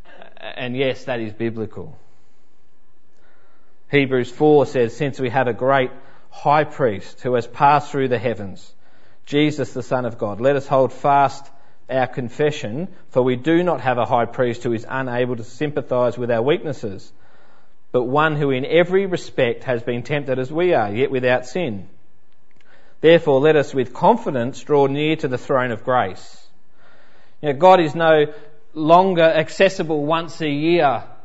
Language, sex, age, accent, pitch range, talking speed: English, male, 30-49, Australian, 125-160 Hz, 160 wpm